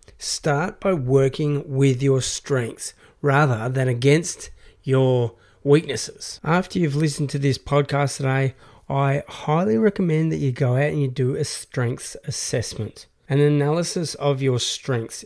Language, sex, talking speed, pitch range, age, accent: English, male, 140 wpm, 130-145 Hz, 30-49, Australian